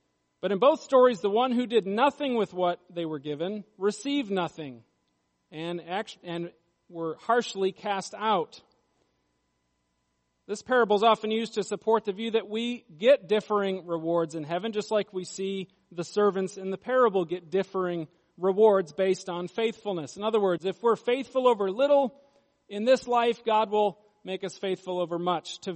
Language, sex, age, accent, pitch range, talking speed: English, male, 40-59, American, 170-225 Hz, 165 wpm